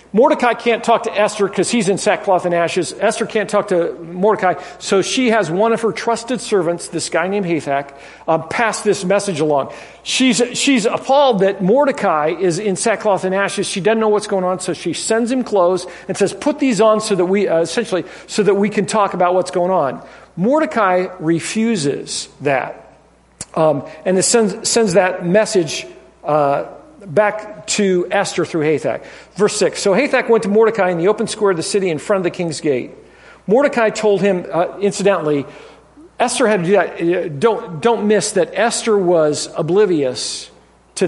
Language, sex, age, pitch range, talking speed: English, male, 50-69, 170-220 Hz, 185 wpm